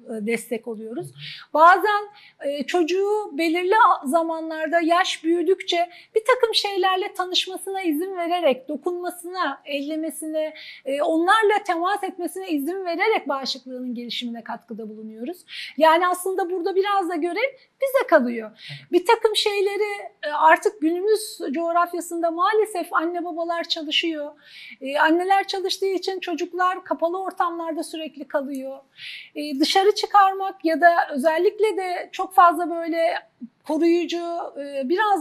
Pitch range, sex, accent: 315-390 Hz, female, native